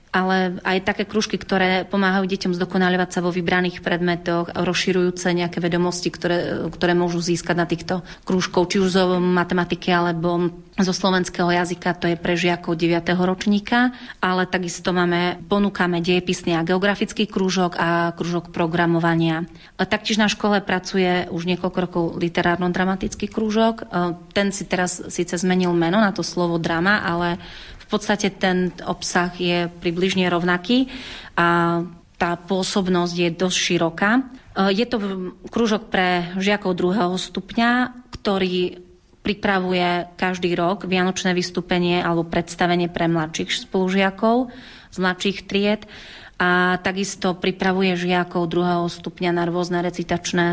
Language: Slovak